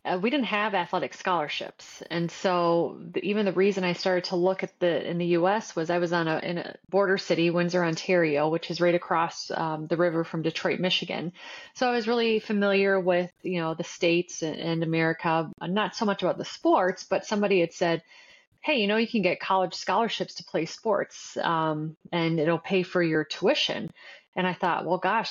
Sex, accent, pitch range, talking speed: female, American, 165-190 Hz, 210 wpm